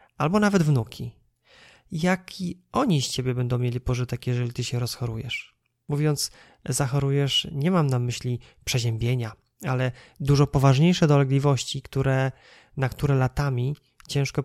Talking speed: 120 wpm